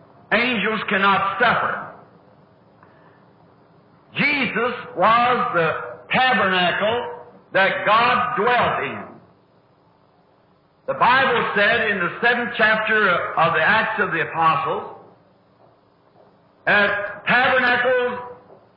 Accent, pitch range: American, 210-250 Hz